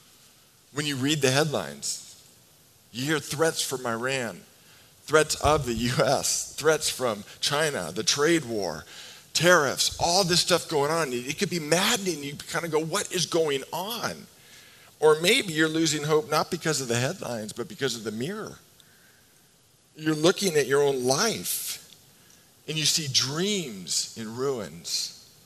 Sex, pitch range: male, 125-165 Hz